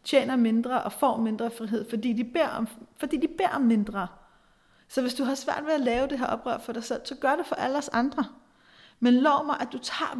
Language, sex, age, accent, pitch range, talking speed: Danish, female, 30-49, native, 220-265 Hz, 230 wpm